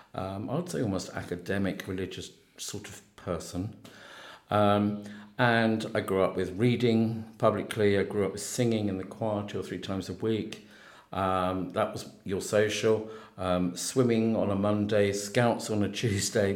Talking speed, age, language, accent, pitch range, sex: 165 wpm, 50-69, English, British, 95-115 Hz, male